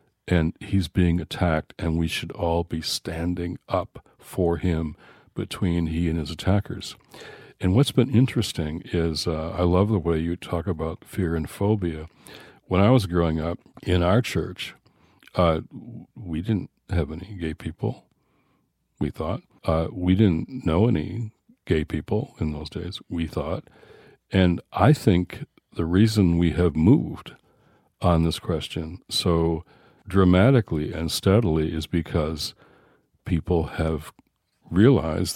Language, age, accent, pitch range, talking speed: English, 60-79, American, 80-100 Hz, 140 wpm